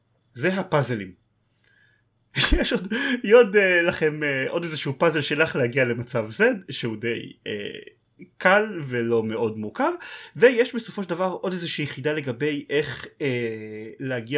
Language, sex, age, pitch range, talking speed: Hebrew, male, 30-49, 115-165 Hz, 140 wpm